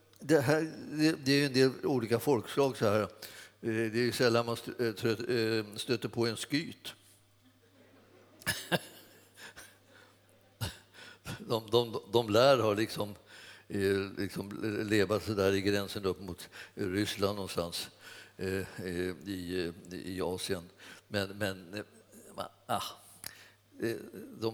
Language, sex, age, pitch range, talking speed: Swedish, male, 60-79, 105-150 Hz, 100 wpm